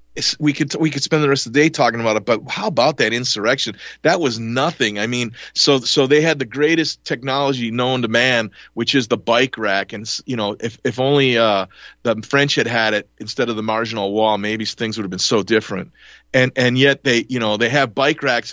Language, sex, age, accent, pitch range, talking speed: English, male, 40-59, American, 115-135 Hz, 235 wpm